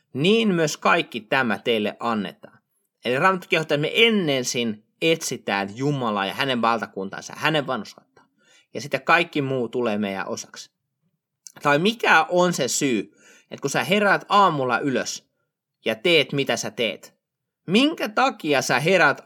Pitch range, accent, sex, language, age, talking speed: 135-190 Hz, native, male, Finnish, 30-49, 145 wpm